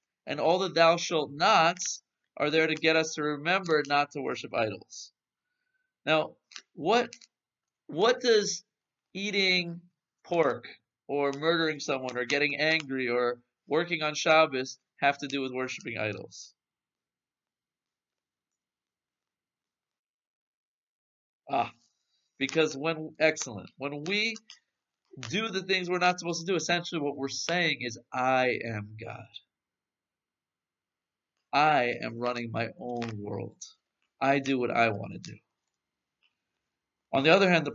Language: English